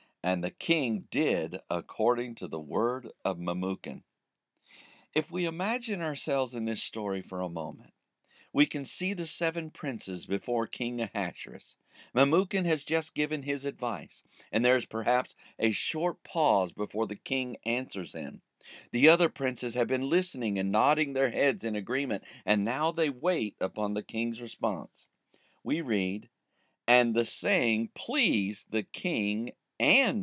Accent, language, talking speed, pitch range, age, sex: American, English, 150 wpm, 105-160 Hz, 50-69, male